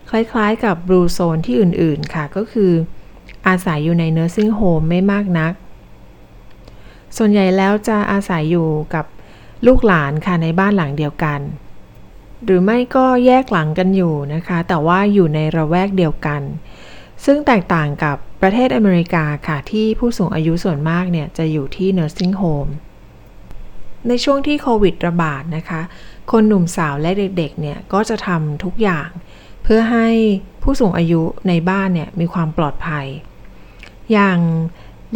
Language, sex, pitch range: Thai, female, 160-205 Hz